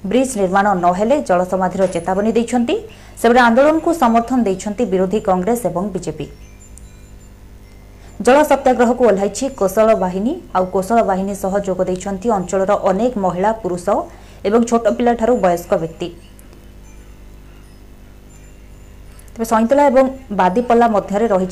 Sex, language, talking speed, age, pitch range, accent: female, Hindi, 55 wpm, 20-39, 185-240 Hz, native